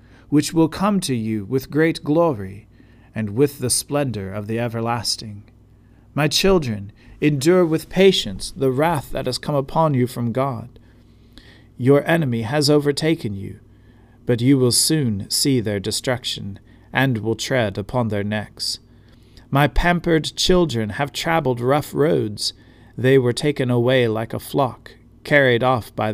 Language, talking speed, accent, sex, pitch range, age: English, 145 wpm, American, male, 110-145 Hz, 40-59